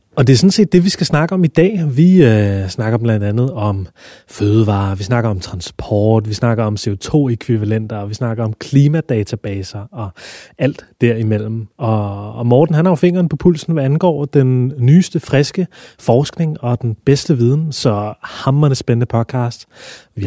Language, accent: Danish, native